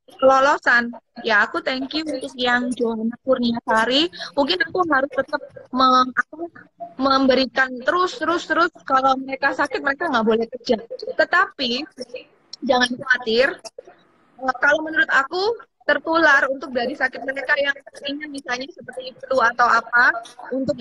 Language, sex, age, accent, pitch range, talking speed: Indonesian, female, 20-39, native, 245-295 Hz, 130 wpm